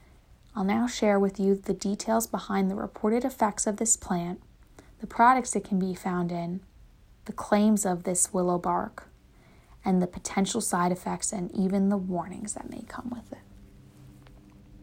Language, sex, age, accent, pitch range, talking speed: English, female, 20-39, American, 185-220 Hz, 165 wpm